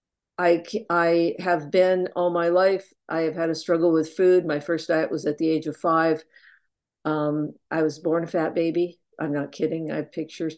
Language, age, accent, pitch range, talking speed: English, 50-69, American, 160-185 Hz, 205 wpm